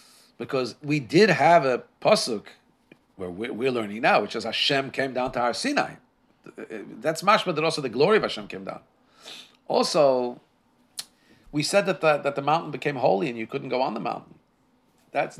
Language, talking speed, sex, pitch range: English, 180 wpm, male, 120-165 Hz